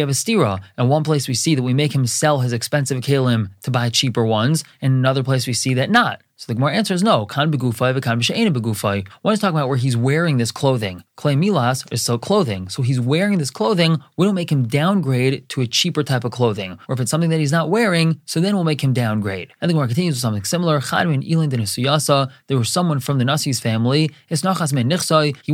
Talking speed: 215 wpm